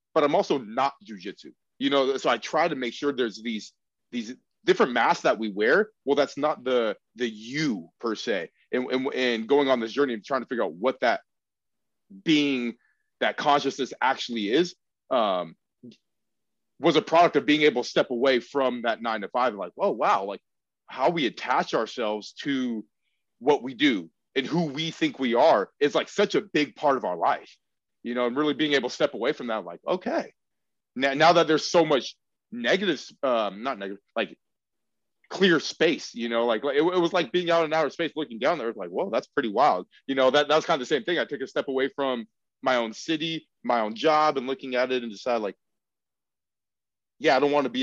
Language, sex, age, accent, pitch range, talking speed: English, male, 30-49, American, 125-160 Hz, 215 wpm